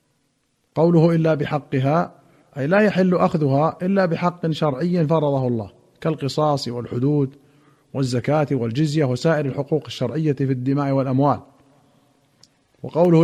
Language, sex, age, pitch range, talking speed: Arabic, male, 50-69, 140-170 Hz, 105 wpm